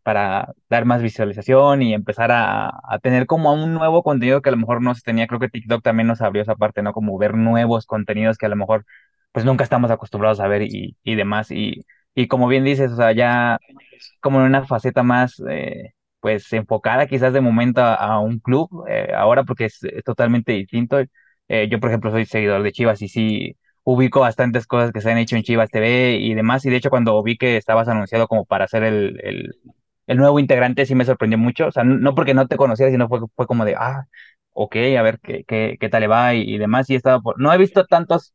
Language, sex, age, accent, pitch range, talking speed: Spanish, male, 20-39, Mexican, 110-130 Hz, 240 wpm